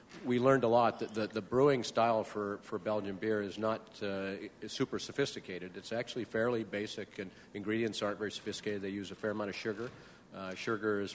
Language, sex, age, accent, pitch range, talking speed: English, male, 50-69, American, 95-110 Hz, 200 wpm